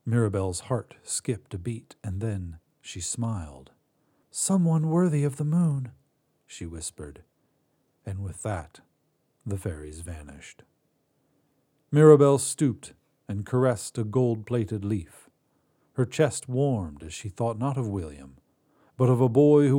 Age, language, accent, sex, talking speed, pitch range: 50-69, English, American, male, 130 wpm, 105-145 Hz